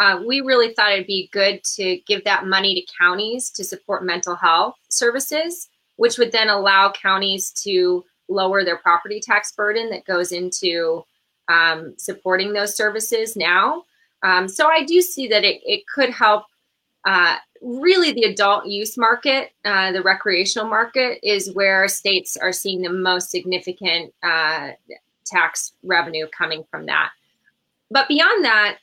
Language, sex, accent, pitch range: English, female, American, 180-230 Hz